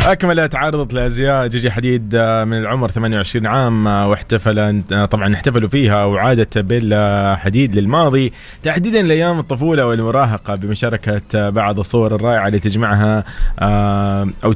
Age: 20-39